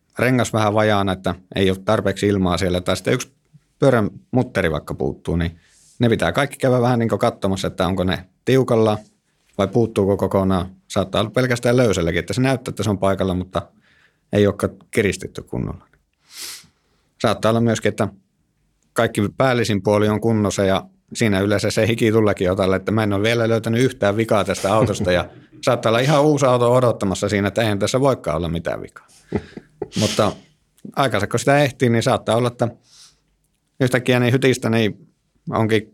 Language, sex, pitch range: Finnish, male, 95-120 Hz